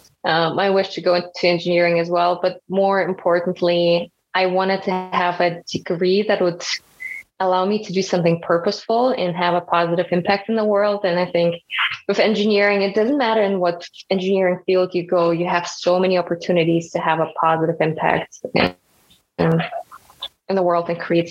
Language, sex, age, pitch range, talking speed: English, female, 20-39, 175-195 Hz, 180 wpm